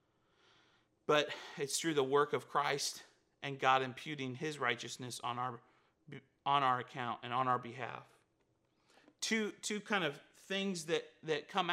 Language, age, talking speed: English, 30-49, 150 wpm